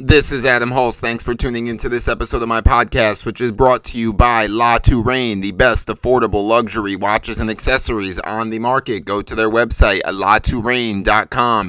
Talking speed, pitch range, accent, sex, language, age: 190 wpm, 115-140 Hz, American, male, English, 30-49